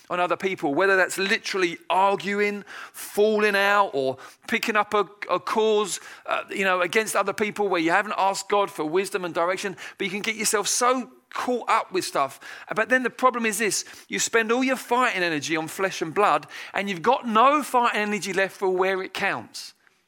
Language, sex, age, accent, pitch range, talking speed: English, male, 40-59, British, 190-230 Hz, 200 wpm